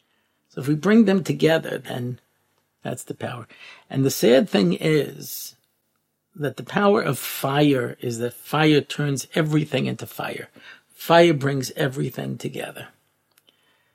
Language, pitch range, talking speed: English, 130-175 Hz, 135 wpm